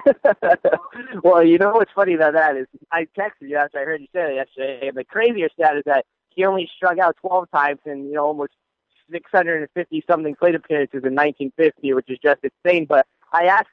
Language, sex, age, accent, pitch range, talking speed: English, male, 30-49, American, 150-185 Hz, 200 wpm